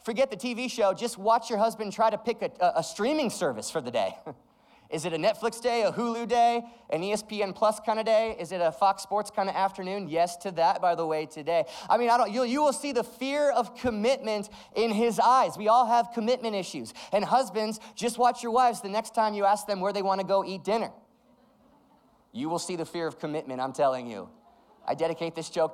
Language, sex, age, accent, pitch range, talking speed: English, male, 30-49, American, 170-250 Hz, 235 wpm